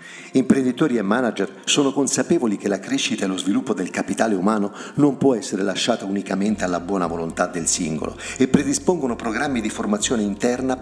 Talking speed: 165 wpm